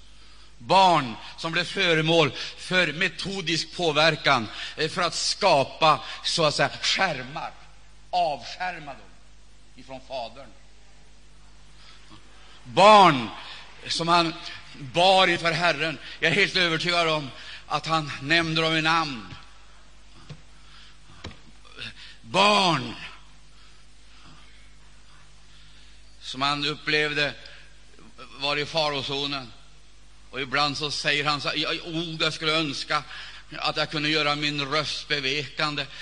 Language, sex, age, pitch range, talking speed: Swedish, male, 60-79, 145-175 Hz, 100 wpm